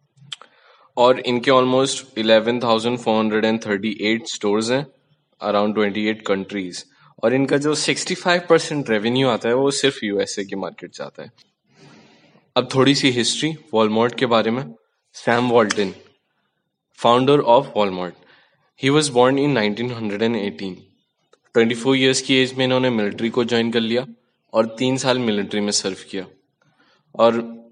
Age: 10-29